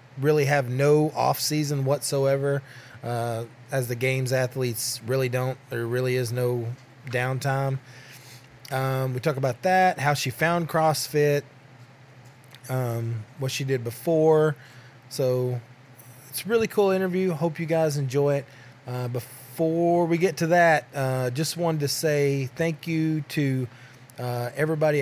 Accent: American